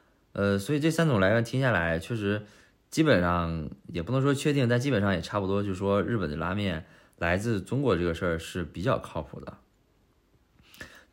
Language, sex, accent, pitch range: Chinese, male, native, 90-115 Hz